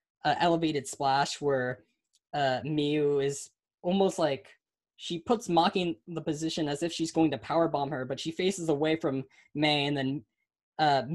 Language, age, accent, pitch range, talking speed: English, 10-29, American, 145-170 Hz, 170 wpm